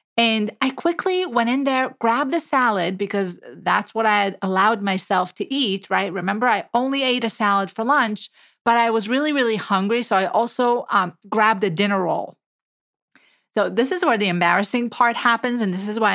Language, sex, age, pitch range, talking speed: English, female, 30-49, 205-260 Hz, 195 wpm